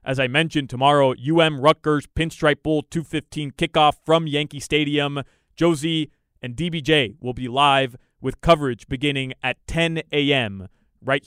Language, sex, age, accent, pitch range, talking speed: English, male, 20-39, American, 125-155 Hz, 140 wpm